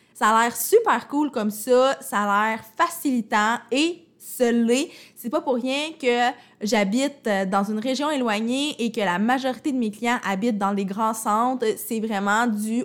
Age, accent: 20-39, Canadian